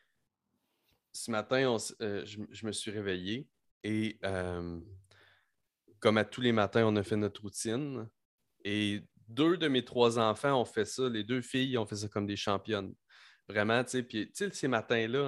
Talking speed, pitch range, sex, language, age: 175 wpm, 95-120 Hz, male, French, 30-49